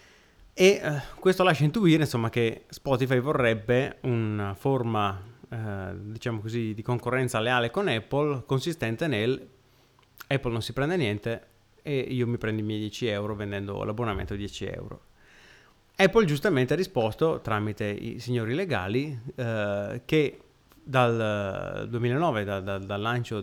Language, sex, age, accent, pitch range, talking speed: Italian, male, 30-49, native, 110-135 Hz, 135 wpm